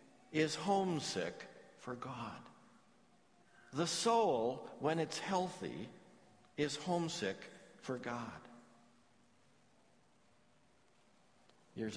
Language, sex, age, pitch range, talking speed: English, male, 60-79, 110-150 Hz, 70 wpm